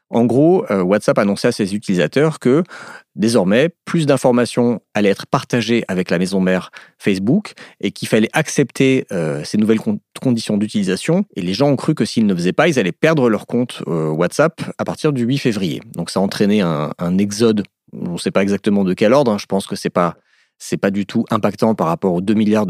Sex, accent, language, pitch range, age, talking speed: male, French, French, 100-140 Hz, 40-59, 220 wpm